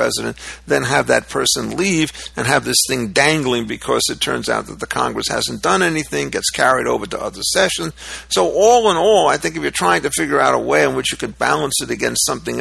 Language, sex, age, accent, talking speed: English, male, 50-69, American, 235 wpm